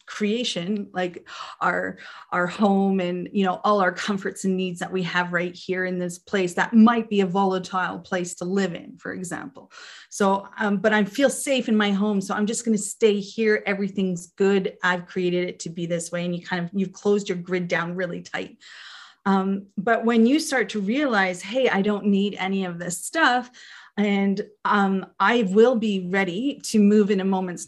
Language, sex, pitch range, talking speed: English, female, 190-240 Hz, 205 wpm